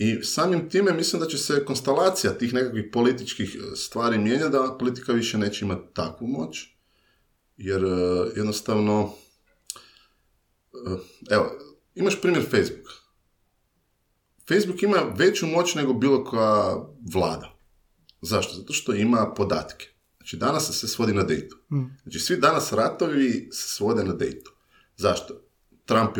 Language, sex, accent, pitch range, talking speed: Croatian, male, native, 105-145 Hz, 125 wpm